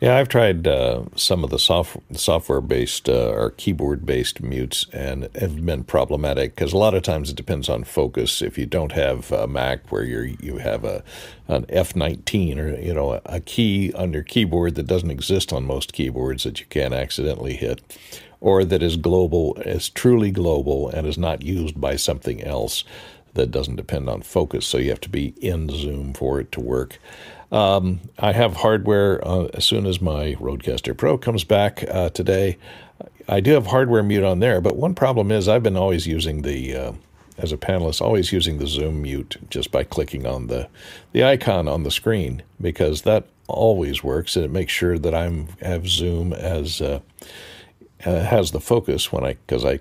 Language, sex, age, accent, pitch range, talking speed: English, male, 60-79, American, 75-100 Hz, 195 wpm